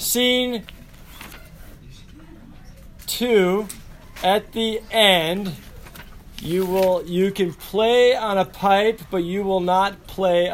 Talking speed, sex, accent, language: 105 wpm, male, American, English